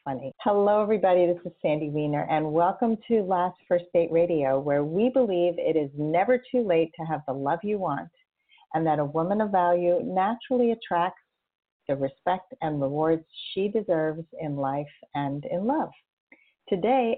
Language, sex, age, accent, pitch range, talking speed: English, female, 50-69, American, 155-215 Hz, 170 wpm